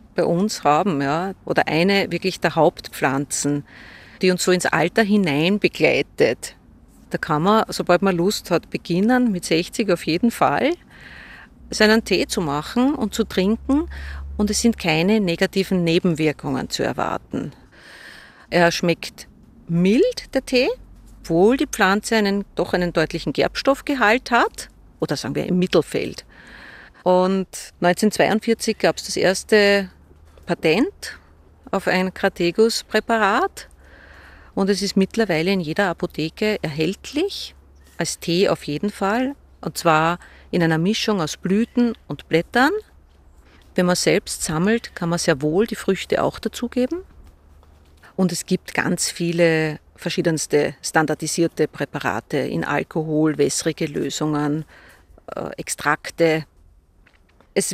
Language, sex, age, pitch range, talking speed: German, female, 40-59, 160-215 Hz, 125 wpm